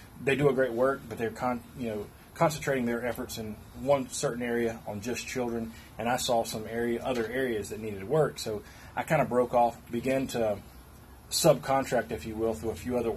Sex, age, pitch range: male, 30-49, 105-120 Hz